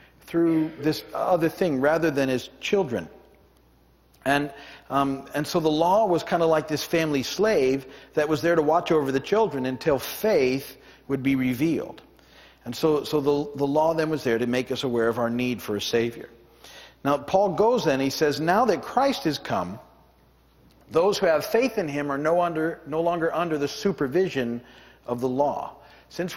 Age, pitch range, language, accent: 50-69, 130-160 Hz, English, American